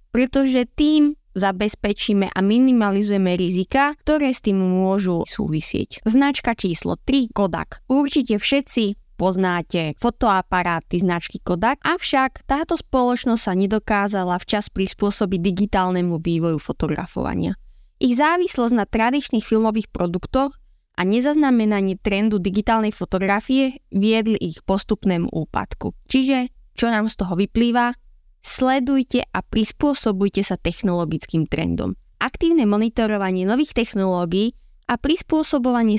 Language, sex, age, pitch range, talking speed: Slovak, female, 20-39, 185-245 Hz, 105 wpm